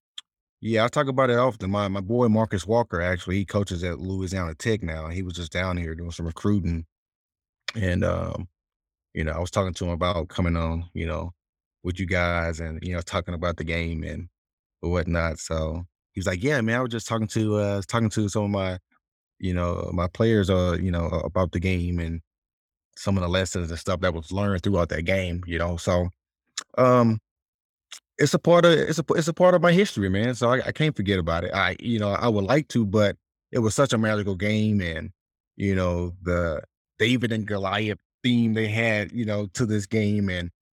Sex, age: male, 20-39